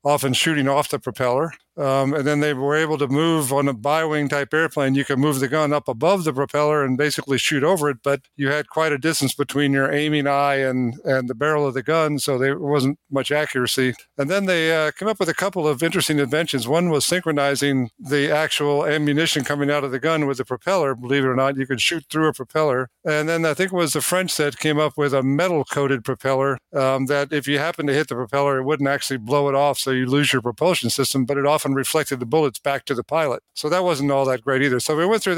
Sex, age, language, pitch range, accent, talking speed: male, 50-69, English, 135-155 Hz, American, 250 wpm